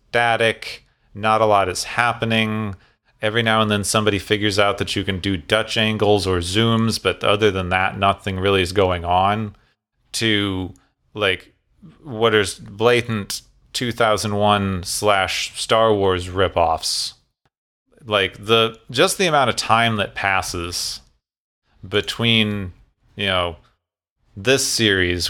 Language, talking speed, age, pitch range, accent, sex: English, 135 wpm, 30-49, 100-120 Hz, American, male